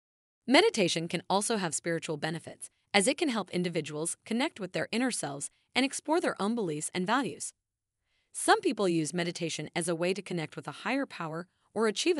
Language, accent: English, American